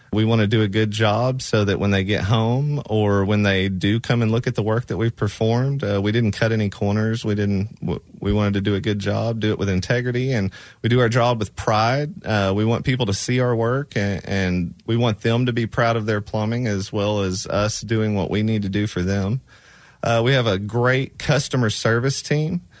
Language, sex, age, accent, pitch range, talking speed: English, male, 30-49, American, 105-130 Hz, 240 wpm